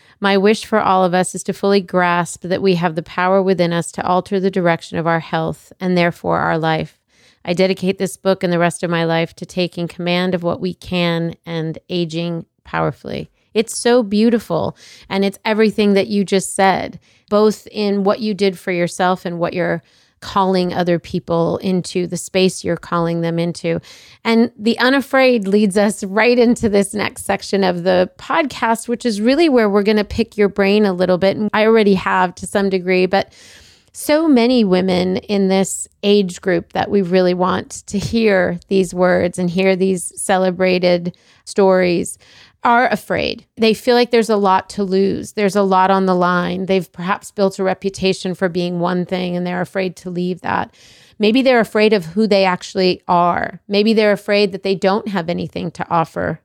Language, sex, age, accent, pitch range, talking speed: English, female, 30-49, American, 180-205 Hz, 190 wpm